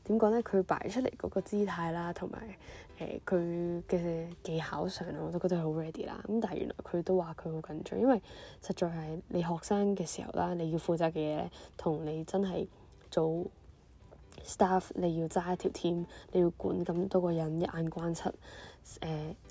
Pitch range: 165-190 Hz